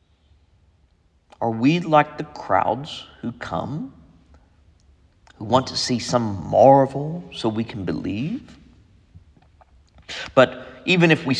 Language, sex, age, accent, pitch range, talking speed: English, male, 50-69, American, 85-135 Hz, 110 wpm